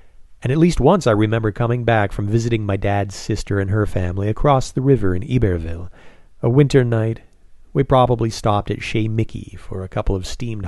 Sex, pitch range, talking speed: male, 90-115 Hz, 195 wpm